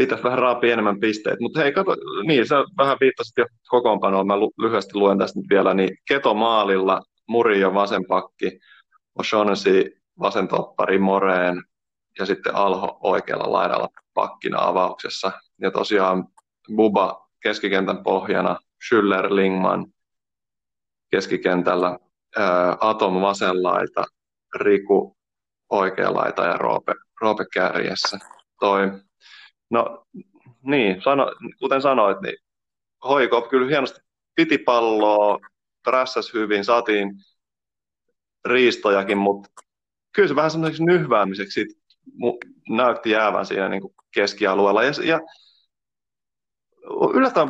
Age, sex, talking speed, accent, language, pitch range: 20-39, male, 100 wpm, native, Finnish, 95-140 Hz